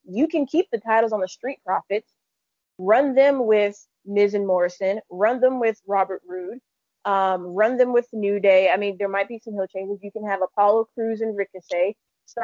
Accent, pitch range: American, 190-215 Hz